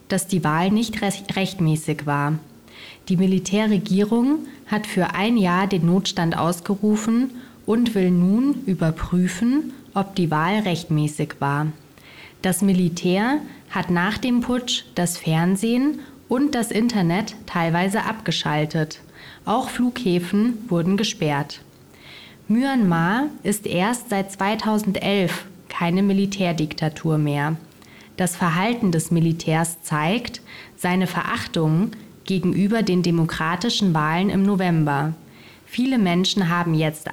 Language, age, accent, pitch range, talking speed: German, 20-39, German, 170-215 Hz, 105 wpm